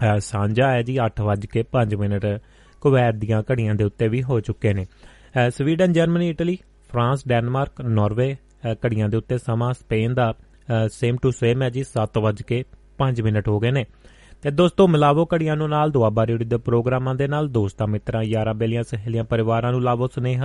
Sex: male